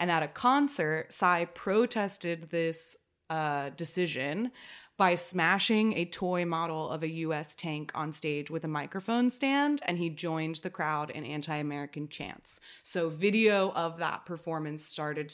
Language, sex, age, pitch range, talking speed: English, female, 20-39, 155-190 Hz, 150 wpm